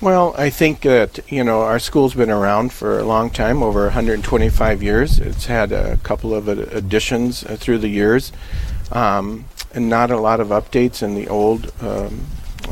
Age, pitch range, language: 50-69, 105-115 Hz, English